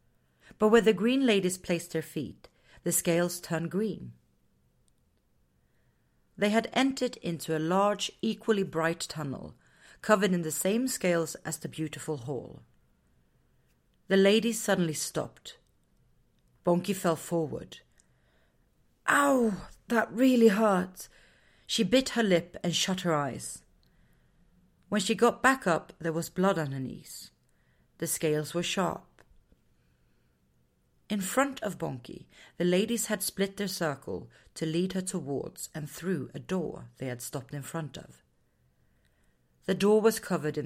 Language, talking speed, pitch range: English, 135 wpm, 145-195 Hz